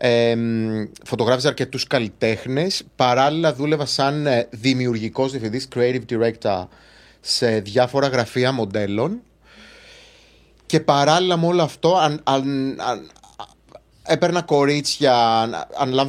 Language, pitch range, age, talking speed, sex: Greek, 115-150 Hz, 30-49, 95 wpm, male